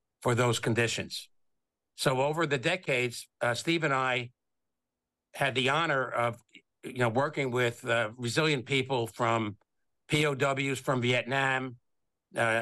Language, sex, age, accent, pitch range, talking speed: English, male, 60-79, American, 120-145 Hz, 130 wpm